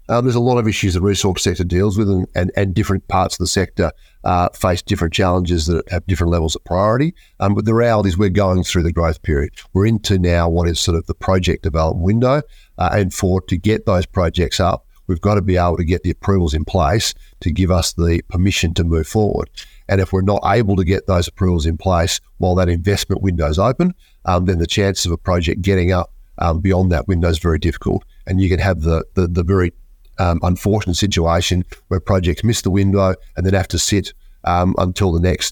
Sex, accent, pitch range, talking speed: male, Australian, 85-100 Hz, 230 wpm